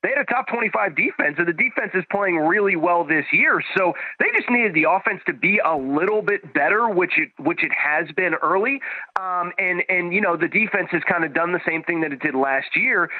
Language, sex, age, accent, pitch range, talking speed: English, male, 30-49, American, 150-185 Hz, 240 wpm